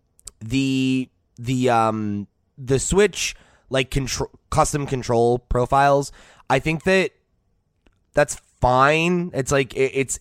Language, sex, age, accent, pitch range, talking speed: English, male, 20-39, American, 110-140 Hz, 110 wpm